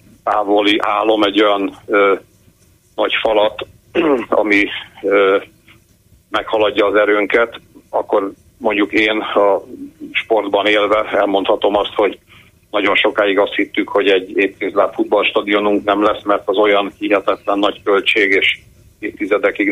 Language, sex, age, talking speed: Hungarian, male, 50-69, 120 wpm